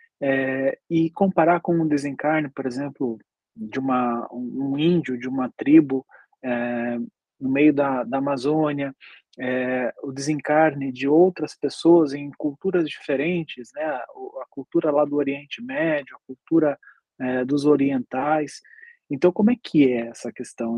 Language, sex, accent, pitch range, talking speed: Portuguese, male, Brazilian, 135-185 Hz, 145 wpm